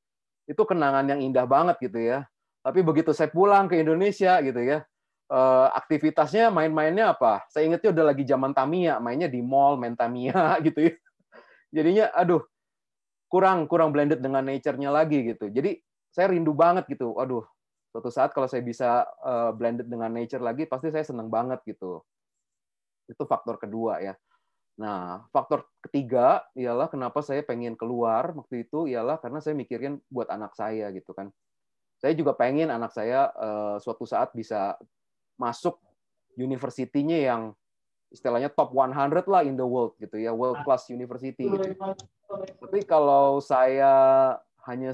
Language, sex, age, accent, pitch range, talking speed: Indonesian, male, 30-49, native, 120-155 Hz, 150 wpm